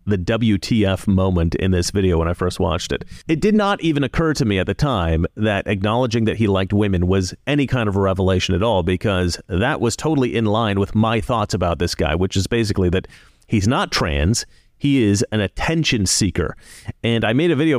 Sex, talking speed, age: male, 215 wpm, 30-49